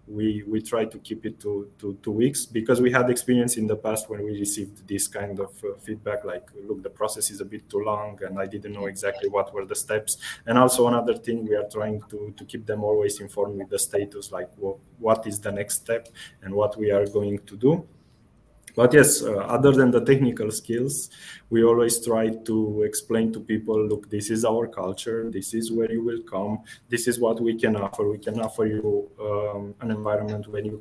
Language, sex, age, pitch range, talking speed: Romanian, male, 20-39, 100-115 Hz, 225 wpm